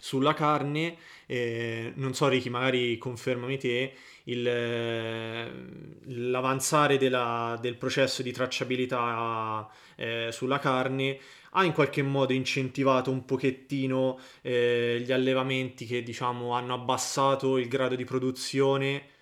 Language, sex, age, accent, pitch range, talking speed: Italian, male, 20-39, native, 115-135 Hz, 115 wpm